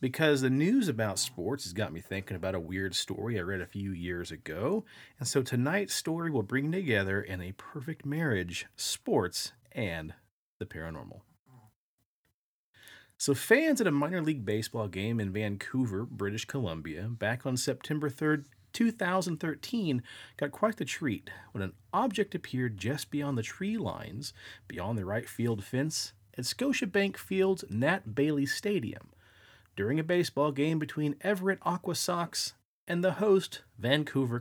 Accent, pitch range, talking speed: American, 110-150 Hz, 150 wpm